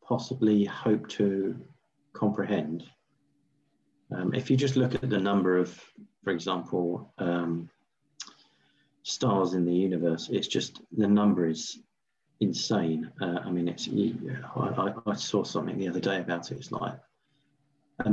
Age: 40-59